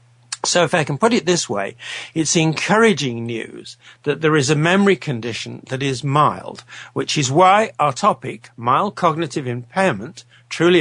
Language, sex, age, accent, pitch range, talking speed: English, male, 60-79, British, 130-175 Hz, 160 wpm